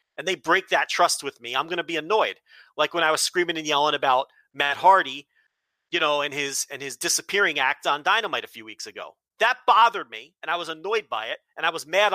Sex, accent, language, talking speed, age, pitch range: male, American, English, 240 wpm, 40-59, 160-220 Hz